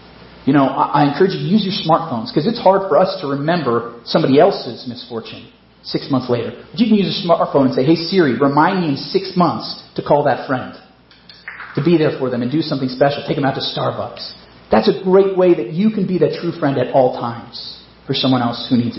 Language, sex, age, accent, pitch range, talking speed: English, male, 40-59, American, 130-190 Hz, 235 wpm